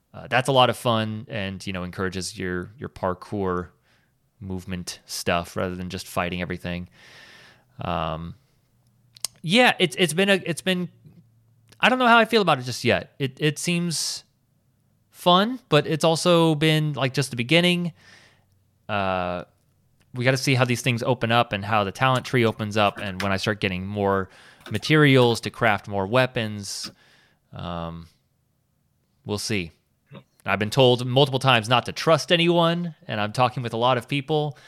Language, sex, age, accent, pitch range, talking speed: English, male, 30-49, American, 95-135 Hz, 170 wpm